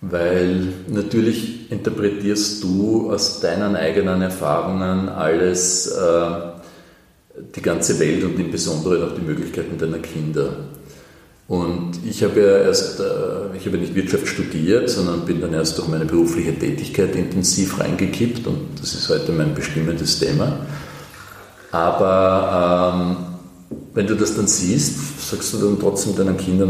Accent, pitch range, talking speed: German, 80-100 Hz, 140 wpm